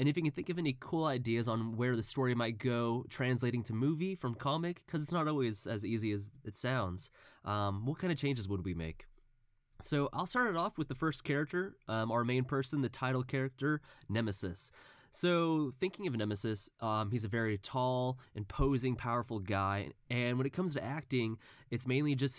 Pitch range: 105-140 Hz